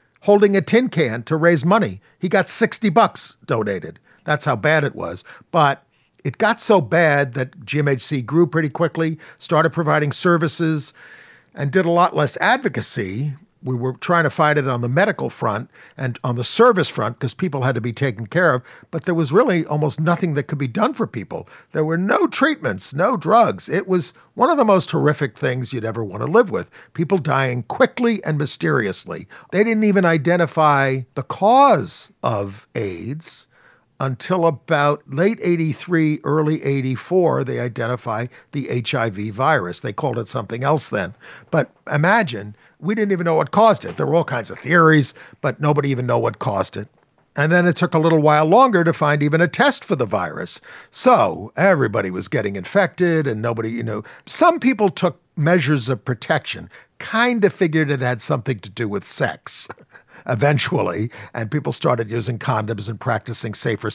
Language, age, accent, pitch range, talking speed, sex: English, 50-69, American, 125-180 Hz, 180 wpm, male